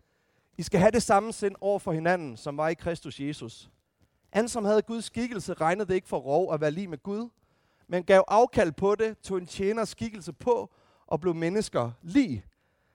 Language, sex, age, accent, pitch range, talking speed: Danish, male, 30-49, native, 180-235 Hz, 200 wpm